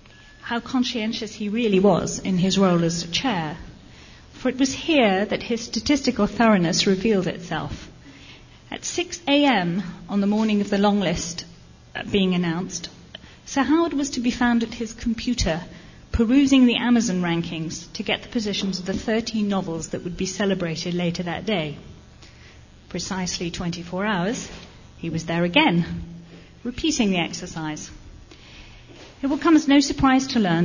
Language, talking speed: English, 155 wpm